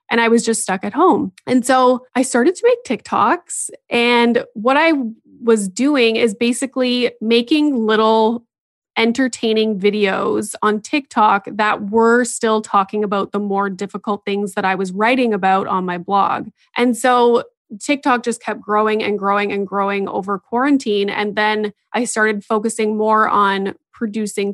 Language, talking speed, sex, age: English, 155 wpm, female, 20-39